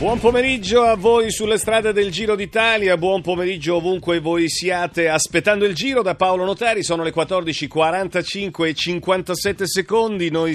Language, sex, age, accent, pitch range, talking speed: Italian, male, 40-59, native, 135-185 Hz, 155 wpm